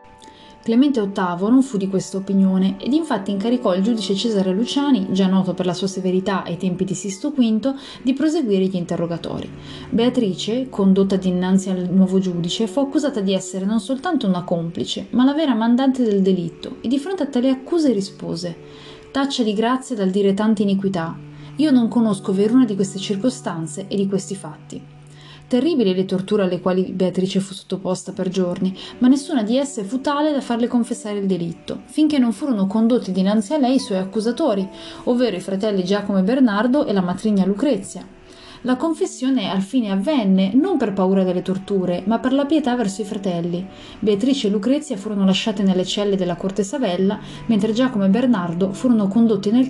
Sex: female